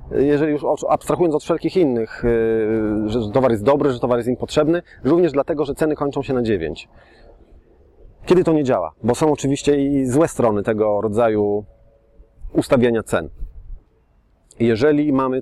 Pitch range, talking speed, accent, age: 115-150 Hz, 150 wpm, native, 30-49